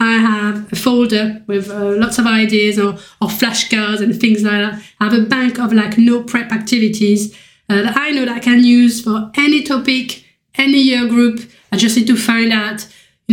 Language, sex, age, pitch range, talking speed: English, female, 20-39, 210-240 Hz, 205 wpm